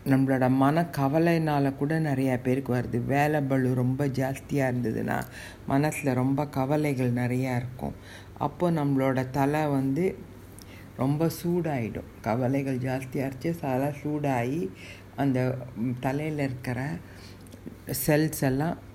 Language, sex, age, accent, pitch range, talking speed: Tamil, female, 60-79, native, 125-145 Hz, 100 wpm